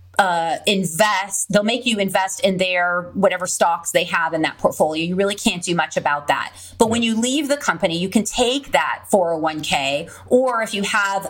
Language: English